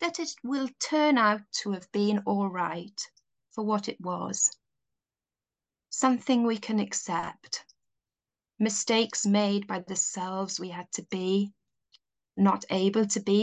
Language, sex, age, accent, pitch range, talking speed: English, female, 30-49, British, 180-220 Hz, 140 wpm